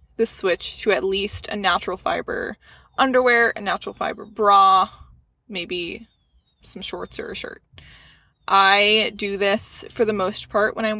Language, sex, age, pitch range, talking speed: English, female, 20-39, 175-220 Hz, 155 wpm